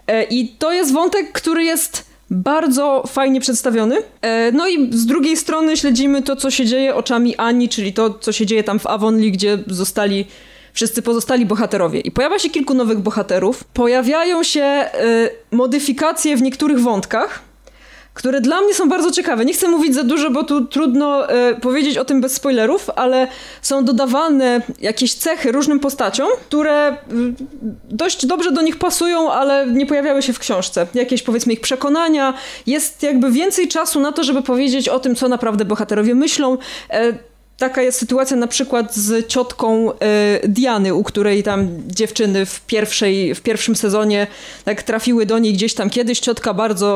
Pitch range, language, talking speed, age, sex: 225-285 Hz, Polish, 160 wpm, 20-39, female